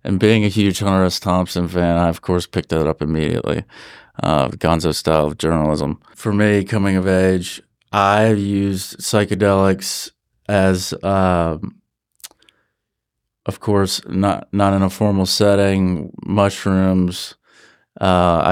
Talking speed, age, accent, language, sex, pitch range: 135 wpm, 30-49, American, English, male, 85-100 Hz